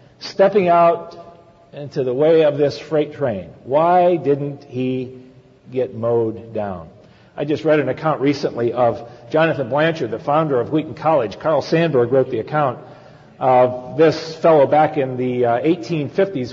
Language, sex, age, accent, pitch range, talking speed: English, male, 50-69, American, 130-165 Hz, 150 wpm